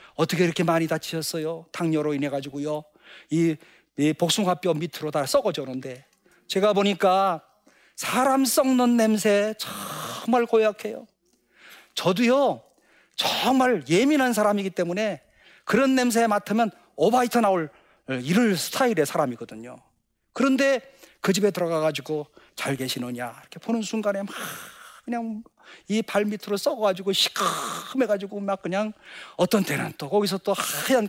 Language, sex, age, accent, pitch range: Korean, male, 40-59, native, 170-220 Hz